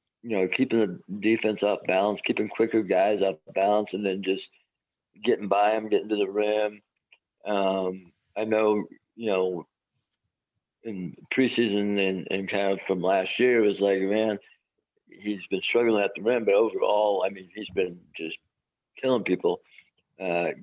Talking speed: 165 wpm